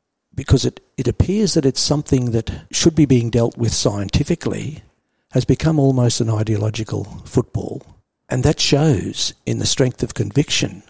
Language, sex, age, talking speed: English, male, 60-79, 155 wpm